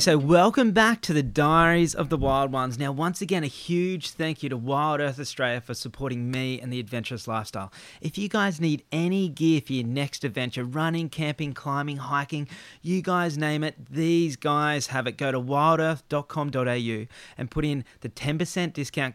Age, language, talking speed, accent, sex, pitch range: 30-49, English, 185 wpm, Australian, male, 125-155 Hz